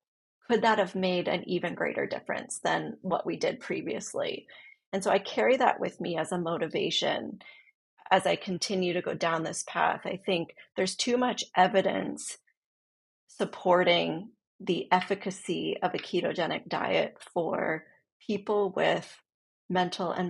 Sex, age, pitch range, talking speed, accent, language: female, 30-49, 180-215 Hz, 145 wpm, American, English